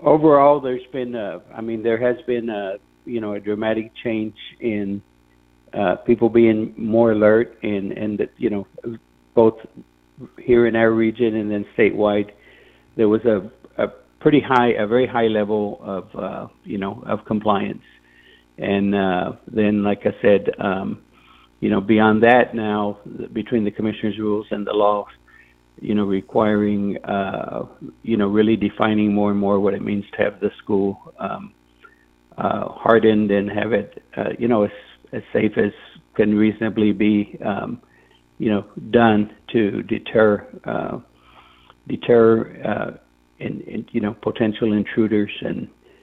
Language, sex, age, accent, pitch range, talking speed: English, male, 60-79, American, 100-115 Hz, 155 wpm